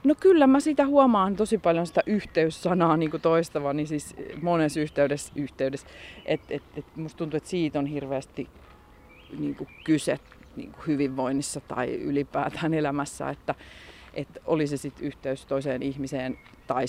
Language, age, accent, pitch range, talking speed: Finnish, 30-49, native, 140-165 Hz, 140 wpm